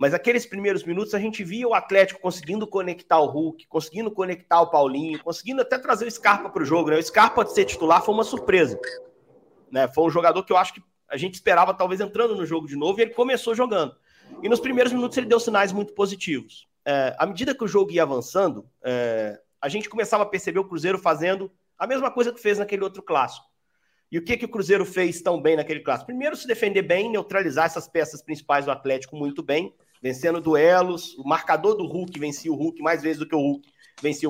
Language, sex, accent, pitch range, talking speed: Portuguese, male, Brazilian, 155-210 Hz, 220 wpm